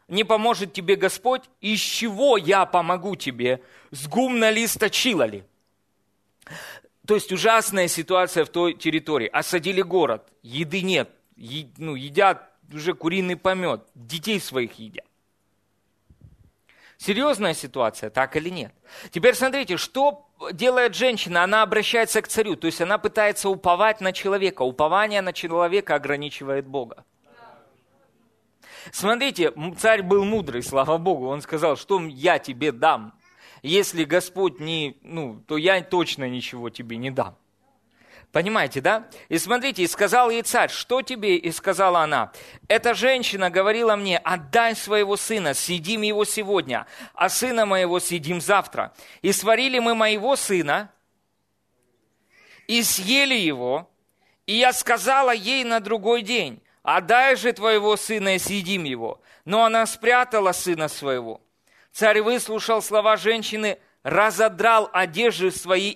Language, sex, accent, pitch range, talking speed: Russian, male, native, 160-220 Hz, 130 wpm